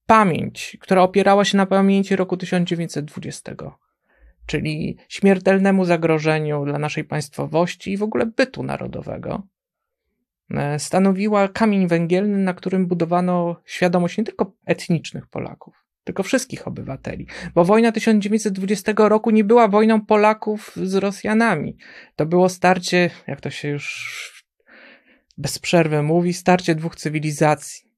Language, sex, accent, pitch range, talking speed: Polish, male, native, 165-195 Hz, 120 wpm